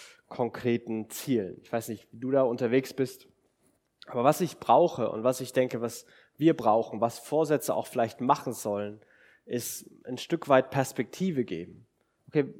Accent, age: German, 20-39